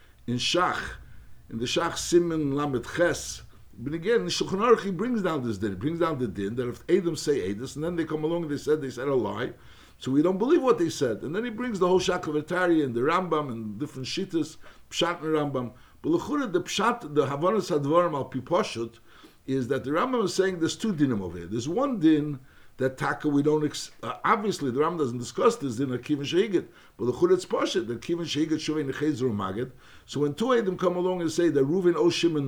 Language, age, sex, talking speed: English, 60-79, male, 225 wpm